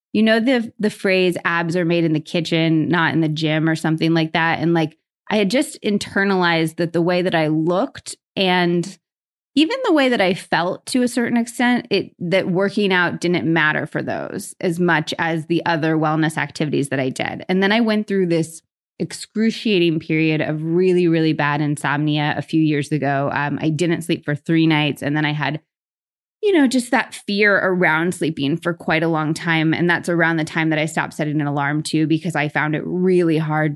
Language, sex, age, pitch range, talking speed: English, female, 20-39, 155-180 Hz, 210 wpm